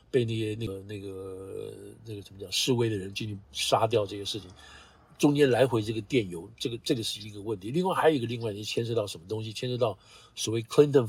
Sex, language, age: male, Chinese, 50-69